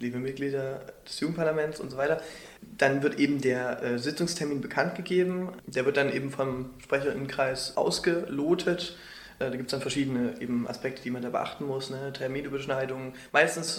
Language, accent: German, German